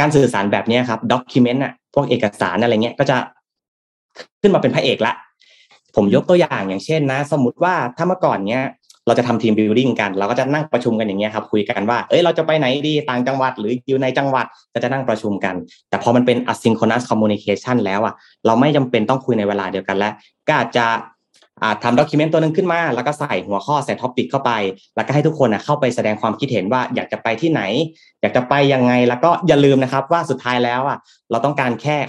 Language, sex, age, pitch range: Thai, male, 20-39, 115-150 Hz